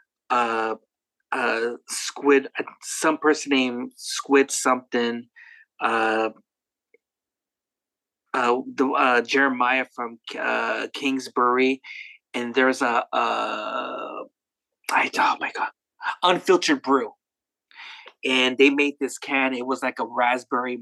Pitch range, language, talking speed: 125-160 Hz, English, 105 wpm